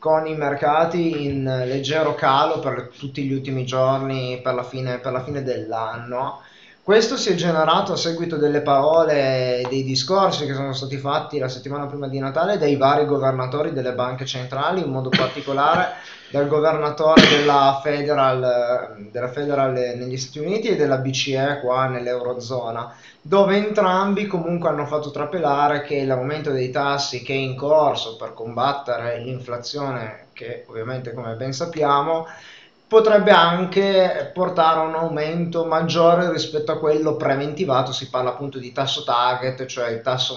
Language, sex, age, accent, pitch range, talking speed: Italian, male, 20-39, native, 130-160 Hz, 155 wpm